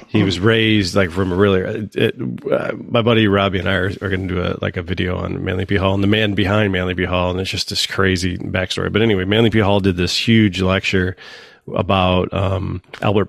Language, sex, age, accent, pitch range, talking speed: English, male, 30-49, American, 90-100 Hz, 240 wpm